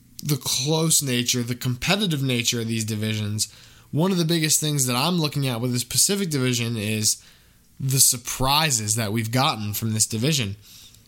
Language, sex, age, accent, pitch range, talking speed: English, male, 10-29, American, 115-145 Hz, 170 wpm